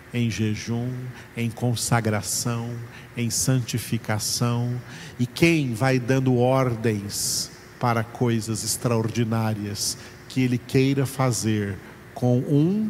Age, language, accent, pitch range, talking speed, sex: 50-69, Portuguese, Brazilian, 110-130 Hz, 95 wpm, male